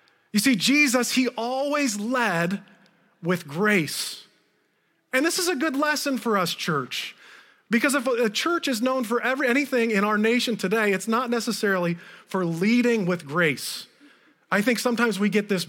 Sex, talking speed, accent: male, 165 wpm, American